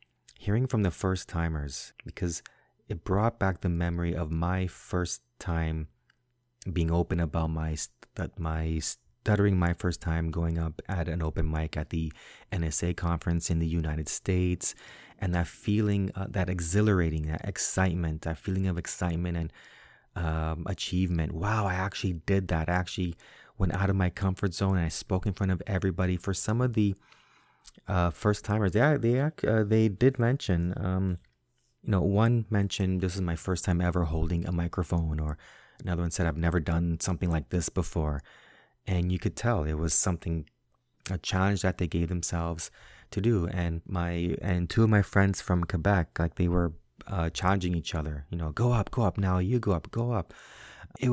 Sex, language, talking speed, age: male, English, 185 wpm, 30-49